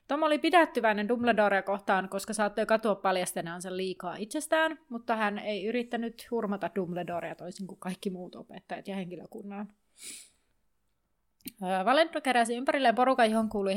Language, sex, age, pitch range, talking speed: Finnish, female, 30-49, 190-245 Hz, 130 wpm